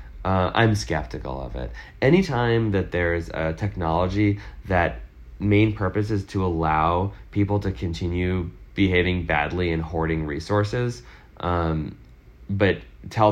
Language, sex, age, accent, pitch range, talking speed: English, male, 20-39, American, 80-110 Hz, 120 wpm